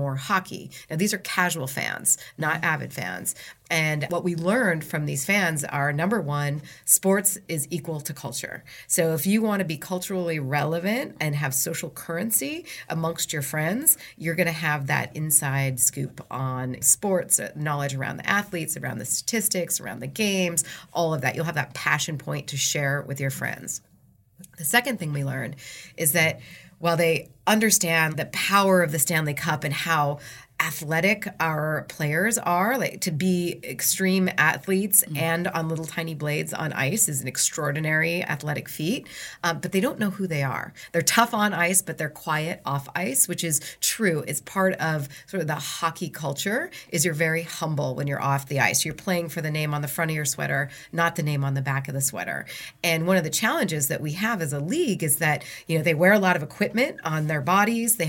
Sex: female